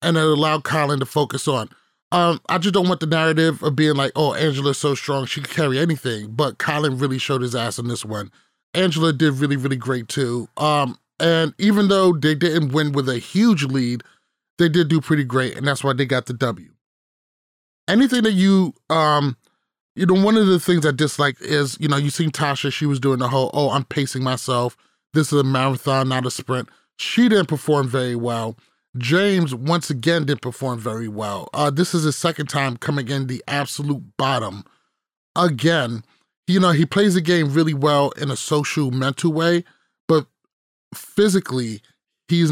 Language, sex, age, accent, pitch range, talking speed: English, male, 30-49, American, 135-170 Hz, 195 wpm